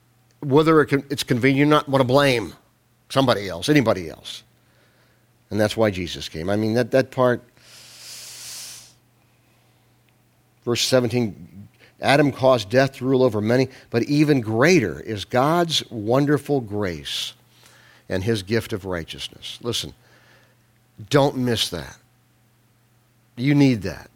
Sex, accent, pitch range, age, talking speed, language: male, American, 115-150 Hz, 50-69, 125 wpm, English